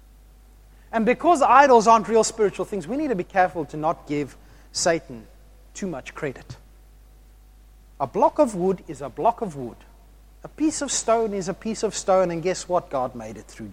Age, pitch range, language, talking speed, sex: 30-49, 140-215 Hz, English, 190 wpm, male